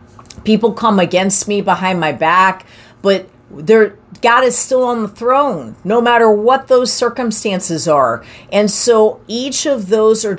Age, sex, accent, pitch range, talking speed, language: 40-59, female, American, 160-210 Hz, 150 wpm, English